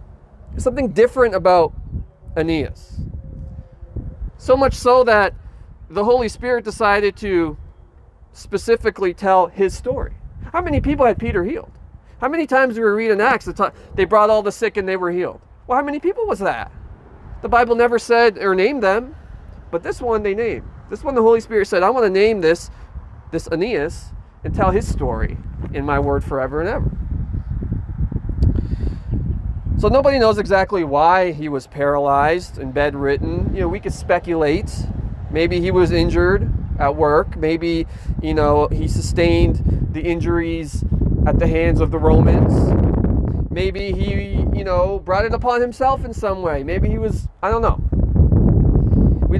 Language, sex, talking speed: English, male, 165 wpm